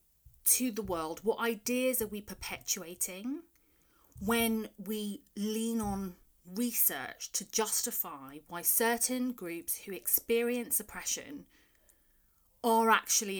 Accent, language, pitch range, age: British, English, 185-235 Hz, 30-49